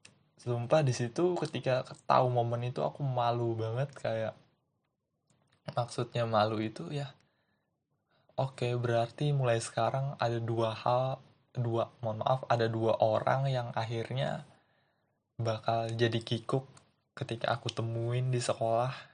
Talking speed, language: 115 wpm, Indonesian